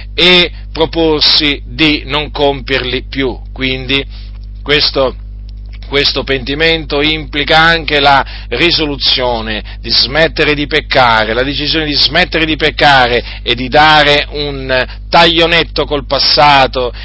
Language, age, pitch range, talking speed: Italian, 40-59, 120-165 Hz, 110 wpm